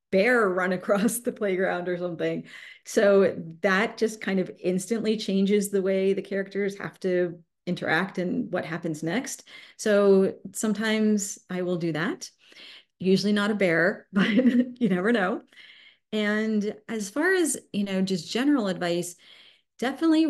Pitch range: 175-215 Hz